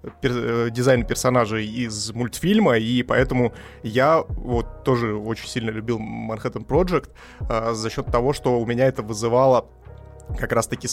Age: 20-39